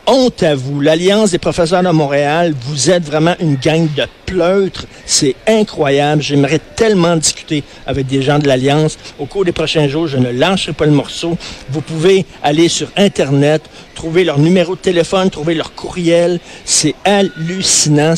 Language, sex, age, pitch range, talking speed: French, male, 50-69, 130-170 Hz, 170 wpm